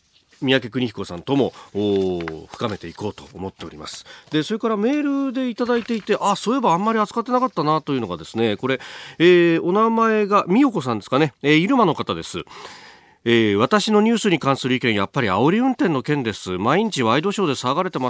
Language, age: Japanese, 40-59